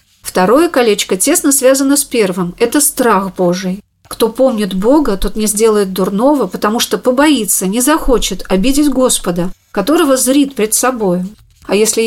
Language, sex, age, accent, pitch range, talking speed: Russian, female, 40-59, native, 205-275 Hz, 145 wpm